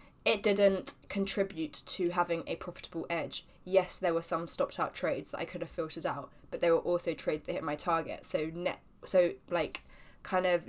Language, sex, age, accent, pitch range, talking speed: English, female, 10-29, British, 170-190 Hz, 200 wpm